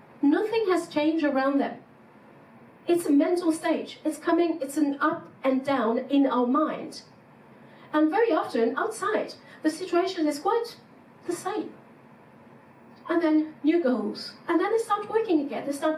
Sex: female